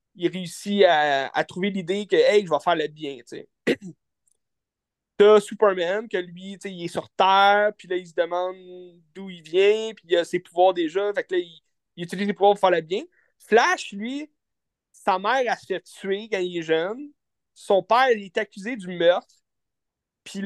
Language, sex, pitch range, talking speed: French, male, 180-225 Hz, 200 wpm